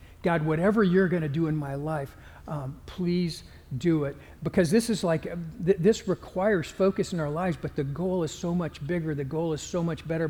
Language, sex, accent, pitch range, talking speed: English, male, American, 150-180 Hz, 210 wpm